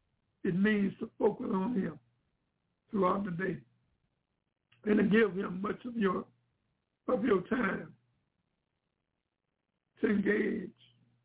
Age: 60-79